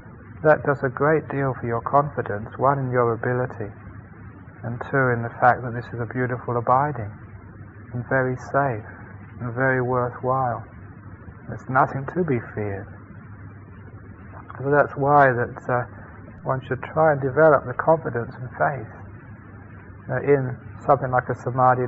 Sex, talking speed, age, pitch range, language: male, 150 wpm, 40-59, 110-135 Hz, English